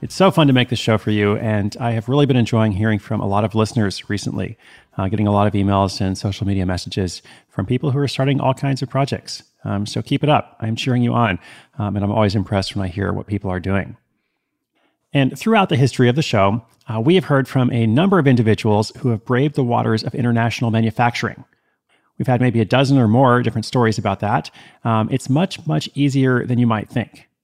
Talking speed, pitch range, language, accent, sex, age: 230 wpm, 105-130 Hz, English, American, male, 30-49